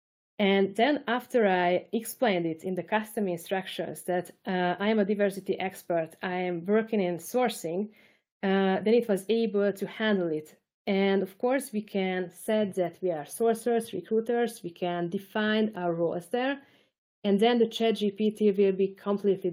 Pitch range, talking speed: 180-215 Hz, 170 wpm